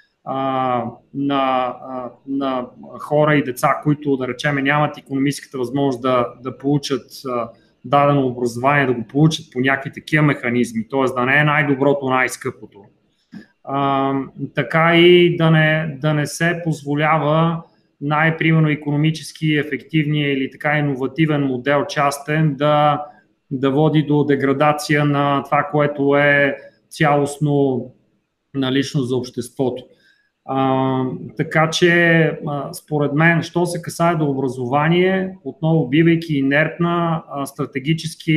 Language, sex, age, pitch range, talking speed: Bulgarian, male, 30-49, 135-155 Hz, 120 wpm